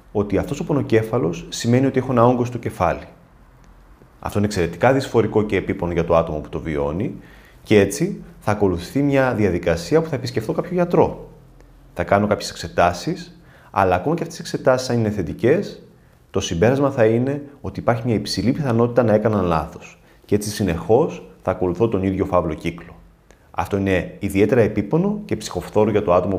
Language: Greek